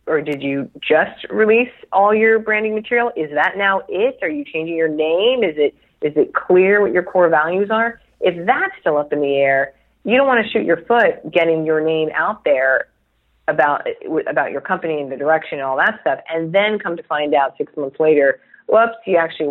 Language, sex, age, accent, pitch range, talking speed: English, female, 30-49, American, 150-220 Hz, 220 wpm